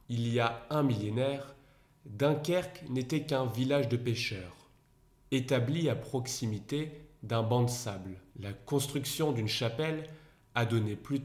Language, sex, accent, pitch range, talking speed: French, male, French, 115-145 Hz, 135 wpm